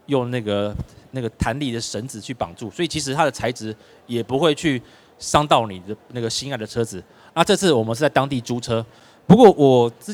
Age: 30-49